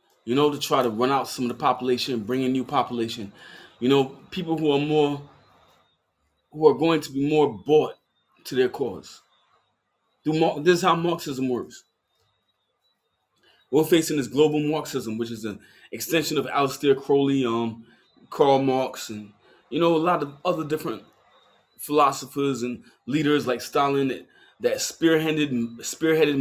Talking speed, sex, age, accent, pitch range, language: 150 wpm, male, 20-39, American, 130-155 Hz, English